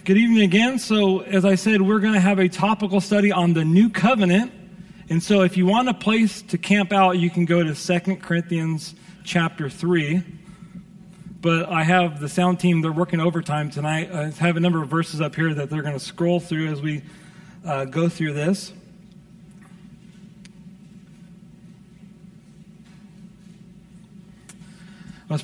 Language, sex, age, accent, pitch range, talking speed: English, male, 40-59, American, 155-190 Hz, 160 wpm